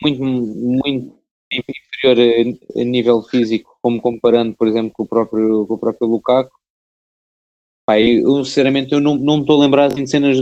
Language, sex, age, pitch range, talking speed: Portuguese, male, 20-39, 120-135 Hz, 180 wpm